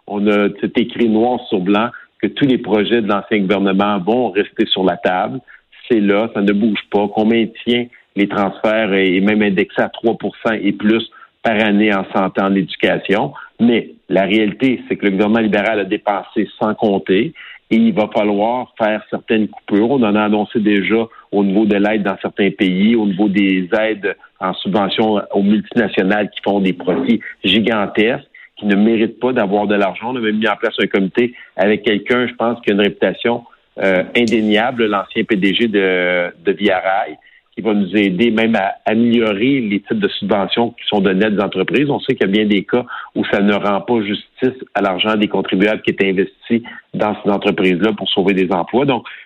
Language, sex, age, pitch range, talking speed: French, male, 50-69, 100-115 Hz, 195 wpm